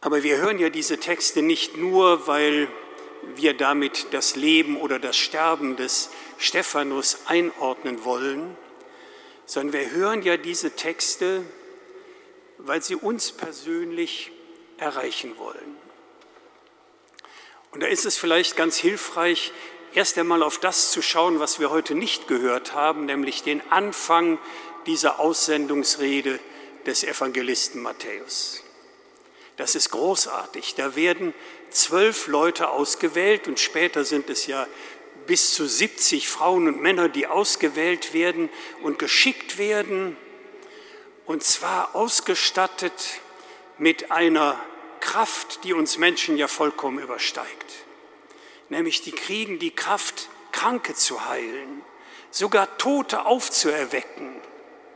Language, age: German, 60-79